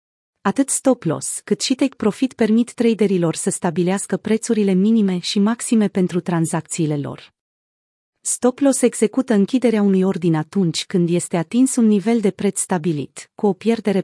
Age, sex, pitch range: 30-49, female, 180-225 Hz